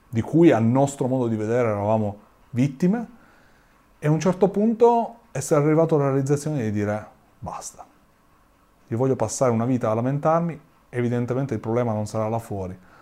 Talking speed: 160 wpm